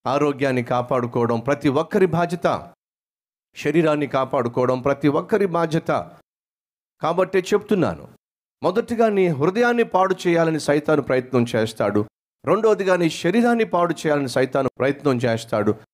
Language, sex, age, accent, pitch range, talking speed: Telugu, male, 40-59, native, 130-180 Hz, 105 wpm